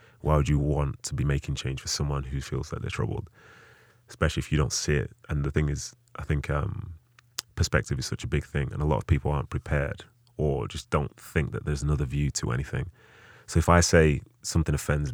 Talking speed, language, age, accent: 230 wpm, English, 30-49, British